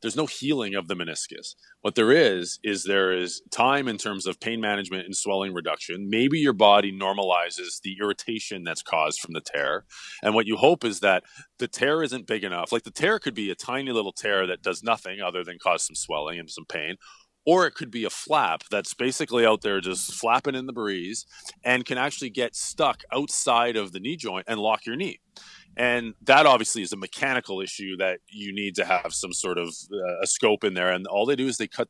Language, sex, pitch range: English, male, 95-120 Hz